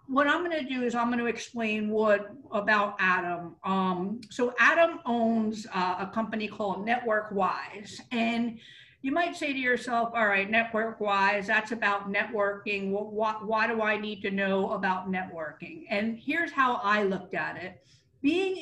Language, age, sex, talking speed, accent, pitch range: English, 50-69, female, 160 wpm, American, 200-245 Hz